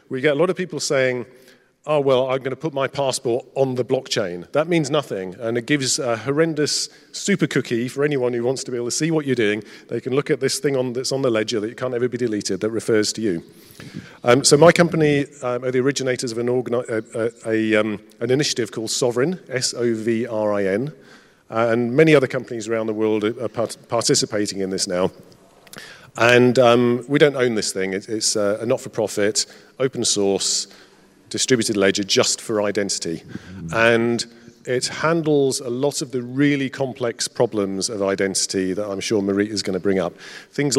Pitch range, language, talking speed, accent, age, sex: 105-130 Hz, German, 185 wpm, British, 40-59, male